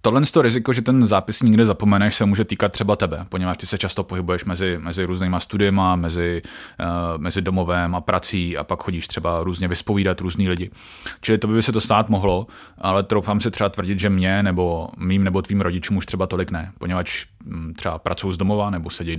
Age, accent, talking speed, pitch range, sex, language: 30-49, native, 210 wpm, 90-105 Hz, male, Czech